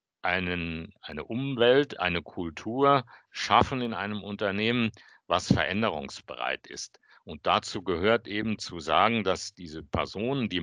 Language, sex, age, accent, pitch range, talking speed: German, male, 50-69, German, 95-120 Hz, 125 wpm